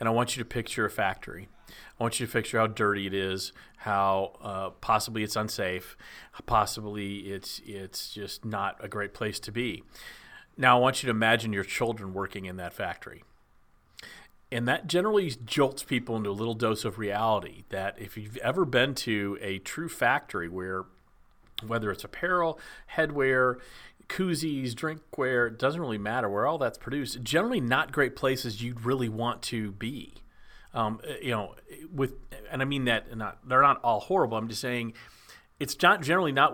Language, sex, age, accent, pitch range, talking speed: English, male, 40-59, American, 100-125 Hz, 180 wpm